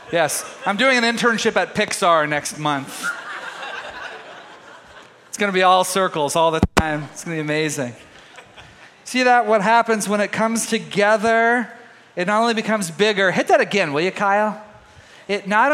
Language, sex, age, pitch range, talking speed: English, male, 30-49, 165-225 Hz, 170 wpm